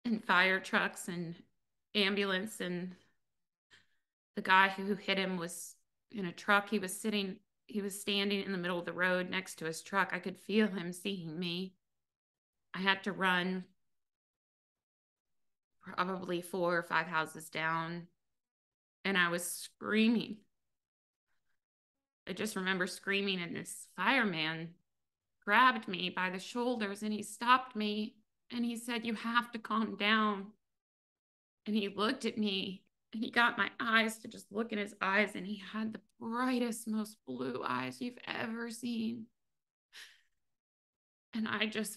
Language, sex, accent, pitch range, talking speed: English, female, American, 185-220 Hz, 150 wpm